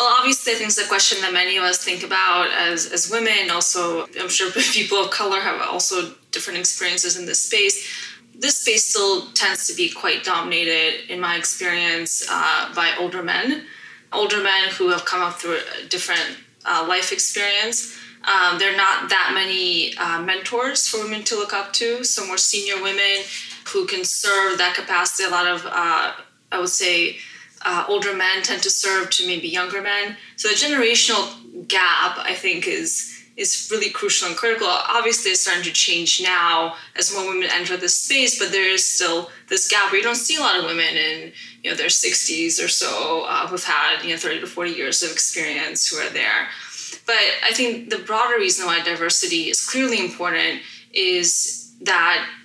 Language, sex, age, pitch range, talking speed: English, female, 20-39, 180-250 Hz, 190 wpm